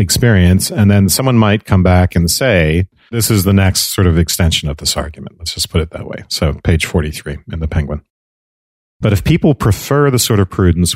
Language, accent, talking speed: English, American, 215 wpm